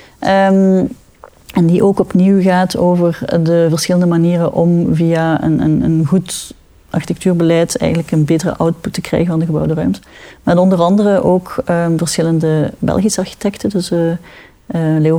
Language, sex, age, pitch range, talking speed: Dutch, female, 30-49, 160-185 Hz, 155 wpm